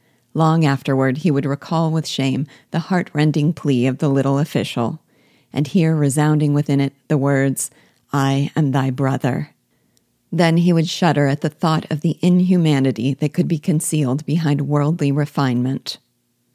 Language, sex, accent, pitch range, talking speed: English, female, American, 135-165 Hz, 150 wpm